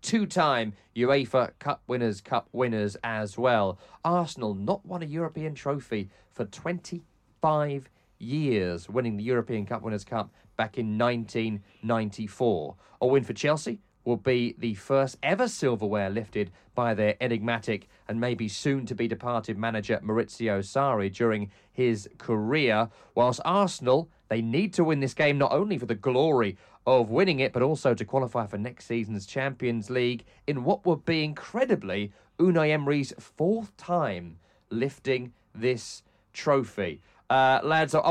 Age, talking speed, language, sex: 30-49, 140 wpm, English, male